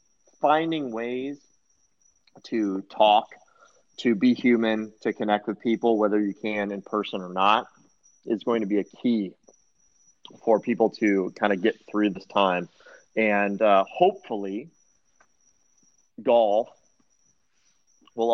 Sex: male